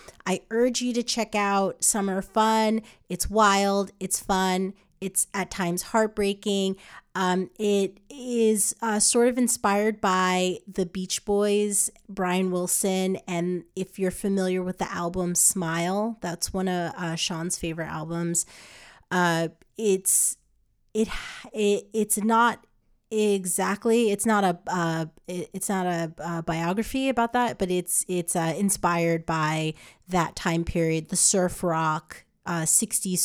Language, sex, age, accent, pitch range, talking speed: English, female, 30-49, American, 175-215 Hz, 140 wpm